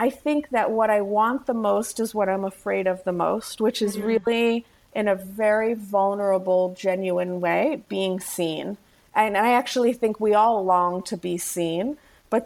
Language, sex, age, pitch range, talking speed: English, female, 30-49, 190-230 Hz, 180 wpm